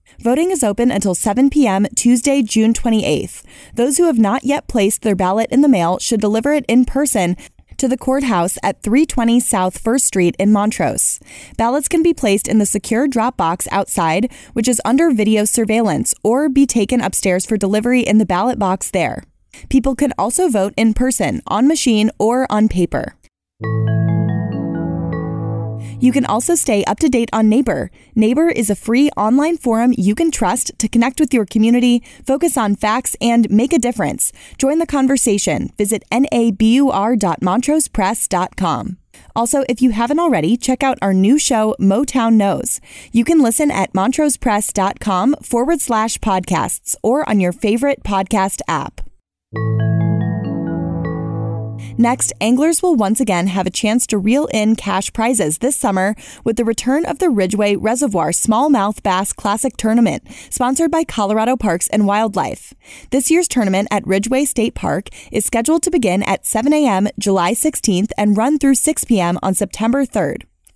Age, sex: 20-39, female